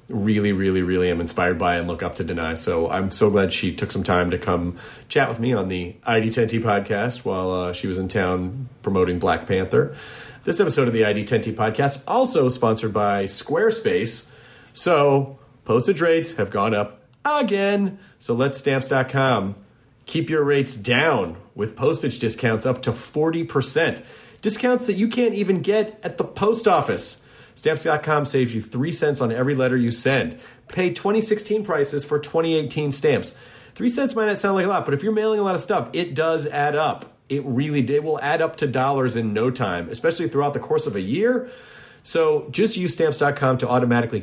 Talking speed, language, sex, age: 185 wpm, English, male, 30-49